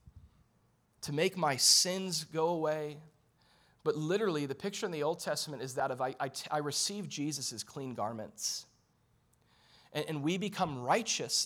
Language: English